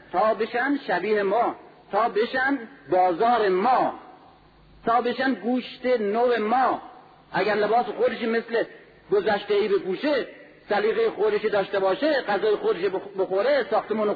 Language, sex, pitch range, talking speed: Persian, male, 210-285 Hz, 120 wpm